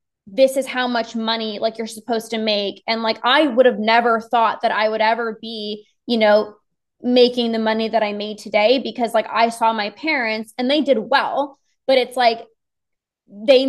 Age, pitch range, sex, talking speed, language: 20-39, 225-255 Hz, female, 195 wpm, English